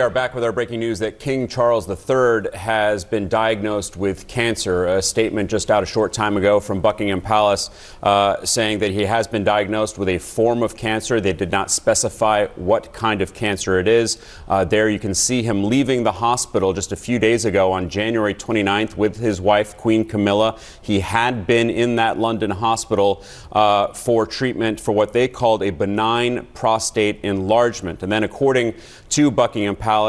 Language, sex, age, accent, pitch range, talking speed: English, male, 30-49, American, 100-115 Hz, 185 wpm